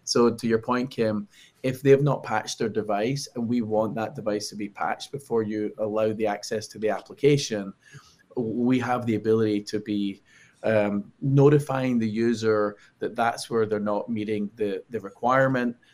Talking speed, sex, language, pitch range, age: 175 wpm, male, English, 105-125 Hz, 20-39